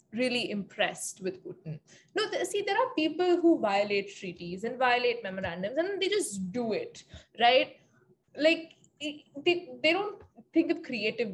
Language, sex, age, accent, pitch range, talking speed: English, female, 10-29, Indian, 230-335 Hz, 155 wpm